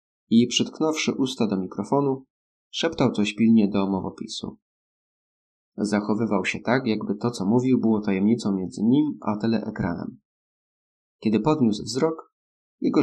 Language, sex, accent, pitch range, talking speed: Polish, male, native, 100-120 Hz, 125 wpm